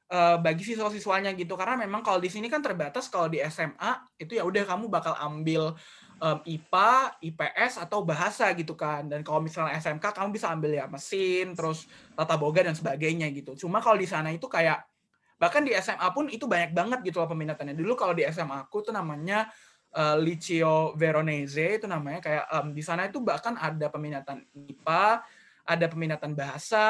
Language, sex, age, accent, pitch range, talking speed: Indonesian, male, 20-39, native, 155-210 Hz, 175 wpm